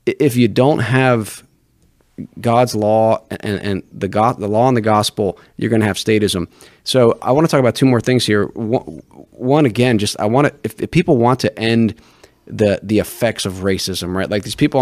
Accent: American